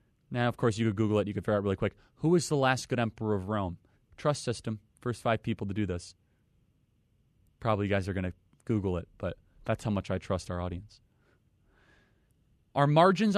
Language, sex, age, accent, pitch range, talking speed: English, male, 30-49, American, 110-135 Hz, 210 wpm